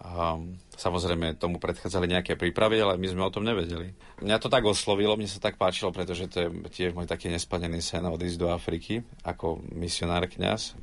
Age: 40-59